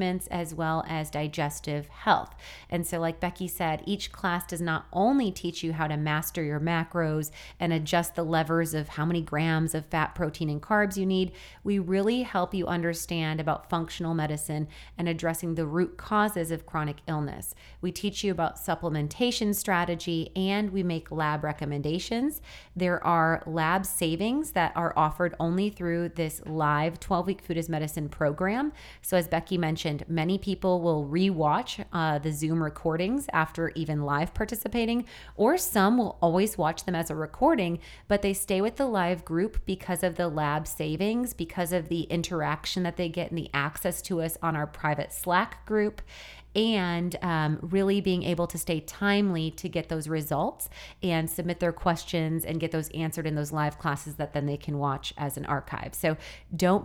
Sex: female